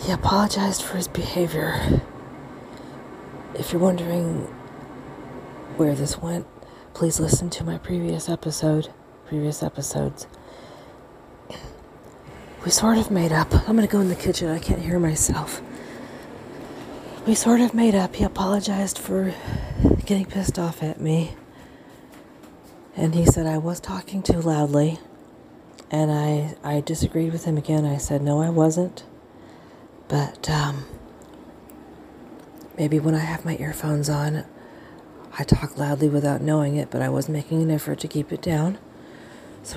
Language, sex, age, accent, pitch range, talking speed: English, female, 40-59, American, 145-170 Hz, 140 wpm